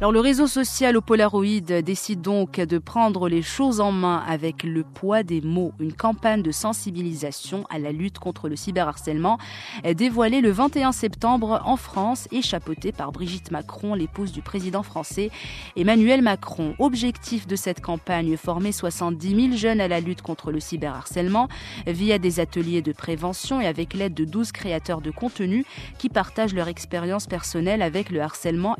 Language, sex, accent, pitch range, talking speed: French, female, French, 165-205 Hz, 170 wpm